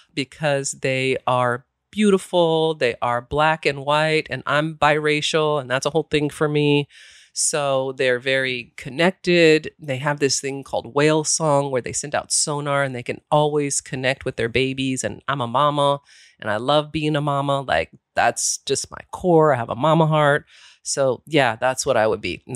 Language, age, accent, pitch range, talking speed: English, 30-49, American, 130-155 Hz, 190 wpm